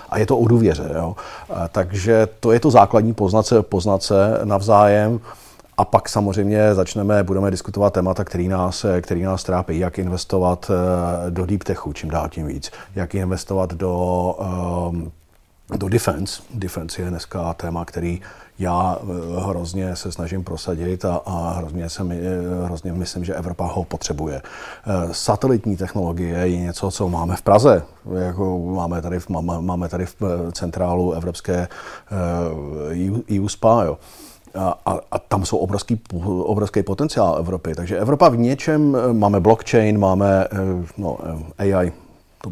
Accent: native